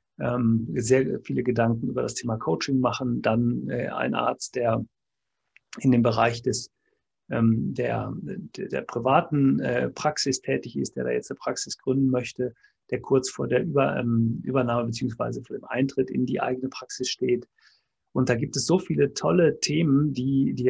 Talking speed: 155 wpm